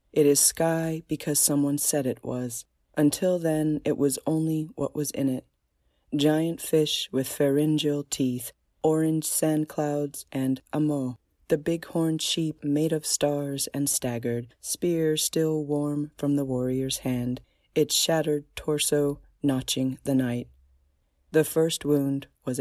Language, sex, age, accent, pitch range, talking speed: English, female, 30-49, American, 130-155 Hz, 140 wpm